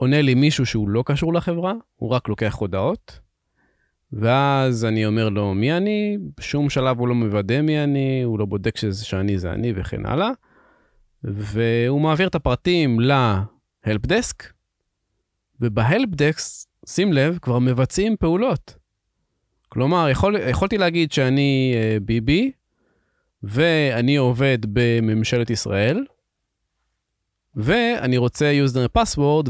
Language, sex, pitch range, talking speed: Hebrew, male, 110-150 Hz, 125 wpm